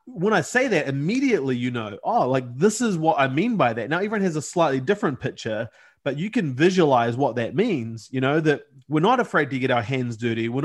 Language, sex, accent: English, male, Australian